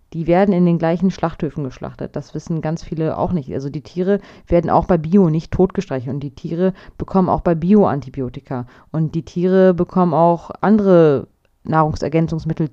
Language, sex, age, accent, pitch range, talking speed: German, female, 30-49, German, 145-175 Hz, 170 wpm